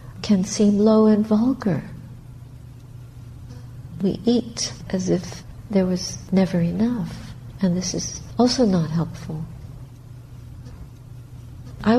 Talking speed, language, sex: 100 wpm, English, female